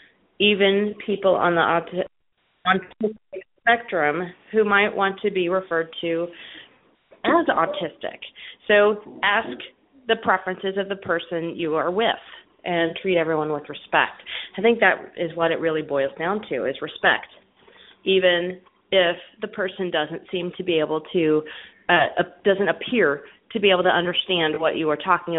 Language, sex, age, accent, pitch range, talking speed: English, female, 30-49, American, 165-205 Hz, 150 wpm